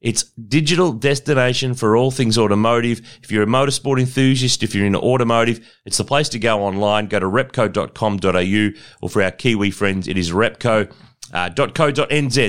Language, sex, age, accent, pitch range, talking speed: English, male, 30-49, Australian, 105-135 Hz, 160 wpm